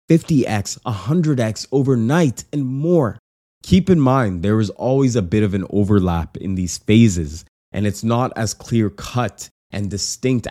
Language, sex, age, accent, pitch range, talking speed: English, male, 20-39, American, 90-125 Hz, 155 wpm